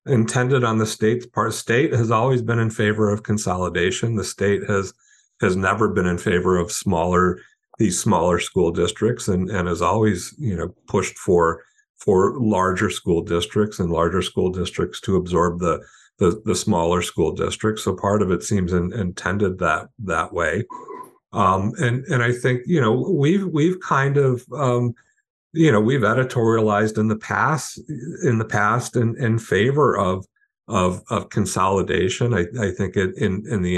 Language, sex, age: English, male, 50-69